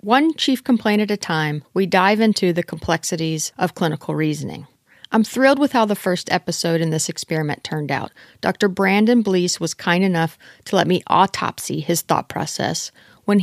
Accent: American